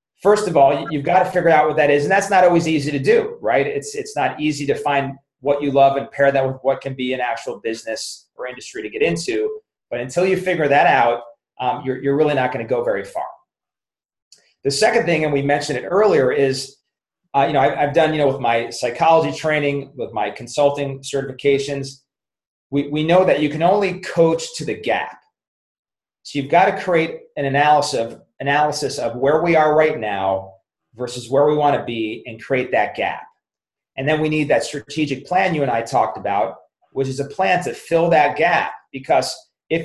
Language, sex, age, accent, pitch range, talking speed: English, male, 30-49, American, 135-170 Hz, 210 wpm